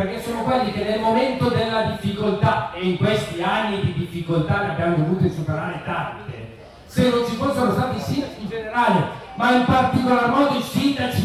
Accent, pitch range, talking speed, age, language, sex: native, 175-230 Hz, 185 wpm, 40-59, Italian, male